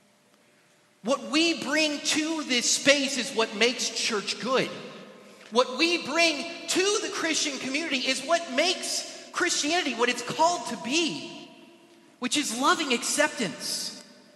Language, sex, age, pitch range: English, male, 30-49, 220-315 Hz